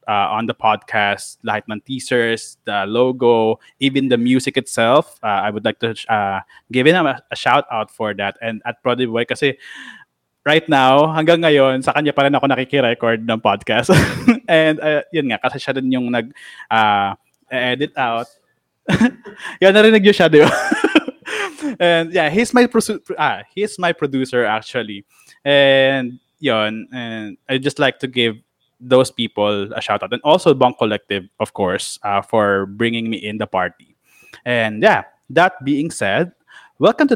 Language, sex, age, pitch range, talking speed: Filipino, male, 20-39, 115-150 Hz, 165 wpm